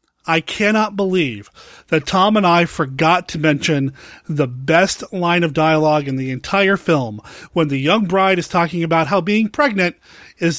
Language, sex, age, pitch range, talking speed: English, male, 30-49, 150-205 Hz, 170 wpm